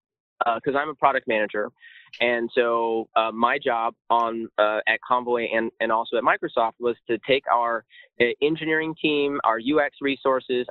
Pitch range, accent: 120-180 Hz, American